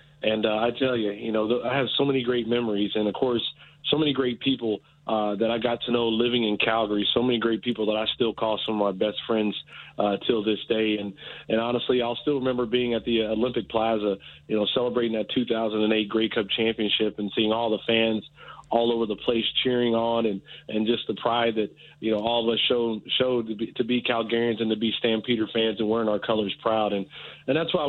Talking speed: 230 wpm